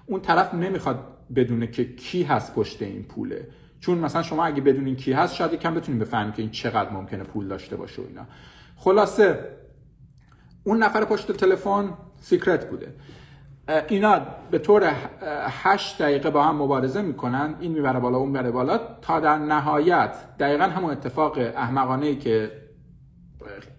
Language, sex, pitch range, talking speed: Persian, male, 125-160 Hz, 155 wpm